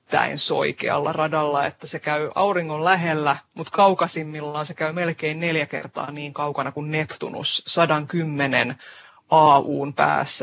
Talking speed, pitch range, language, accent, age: 120 wpm, 150-175 Hz, Finnish, native, 30-49